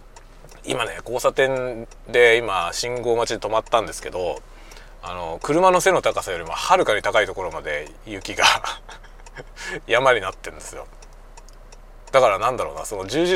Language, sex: Japanese, male